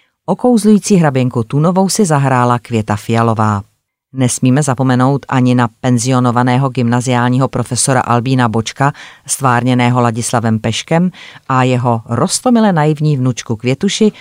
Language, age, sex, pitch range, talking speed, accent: Czech, 30-49, female, 120-145 Hz, 105 wpm, native